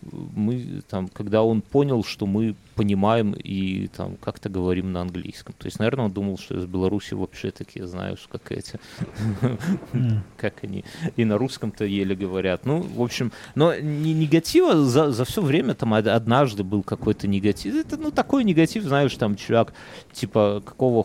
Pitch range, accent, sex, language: 105-140 Hz, native, male, Russian